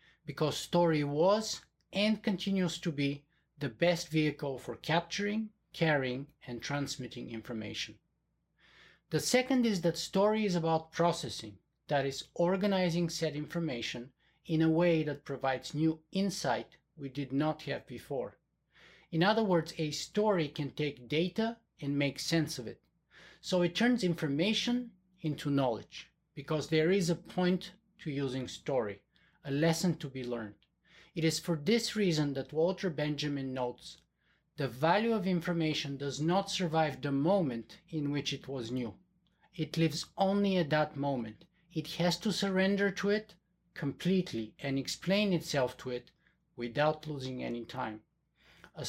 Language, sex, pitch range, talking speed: English, male, 140-180 Hz, 145 wpm